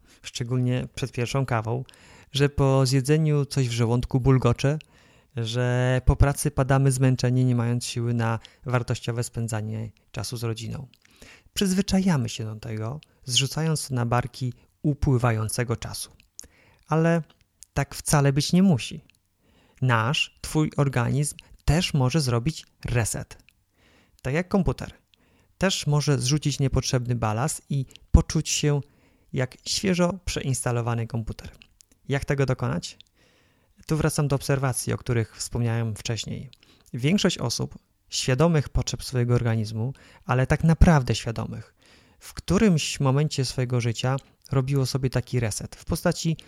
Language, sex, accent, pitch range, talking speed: Polish, male, native, 115-145 Hz, 120 wpm